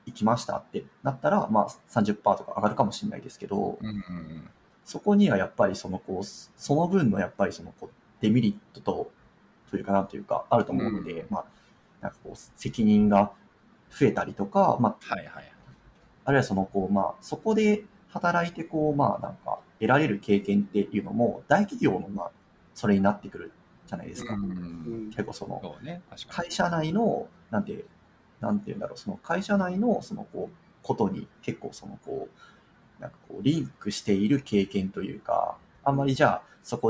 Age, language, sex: 30-49, Japanese, male